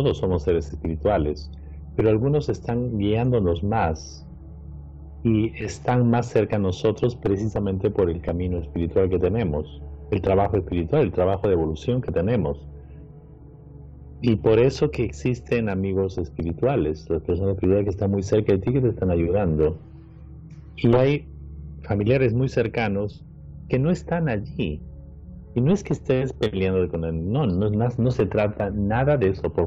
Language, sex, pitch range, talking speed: Spanish, male, 75-105 Hz, 155 wpm